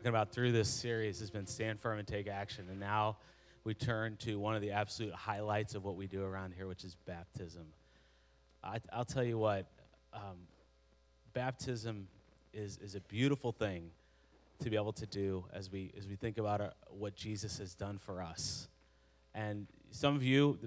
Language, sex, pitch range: English, male, 100-125 Hz